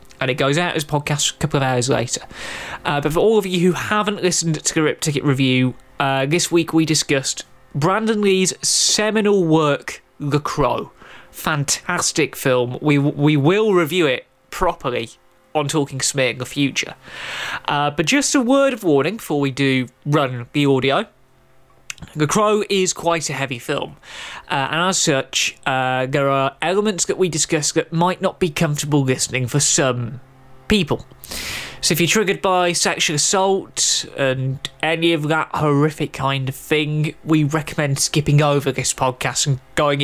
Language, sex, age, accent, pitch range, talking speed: English, male, 20-39, British, 135-175 Hz, 170 wpm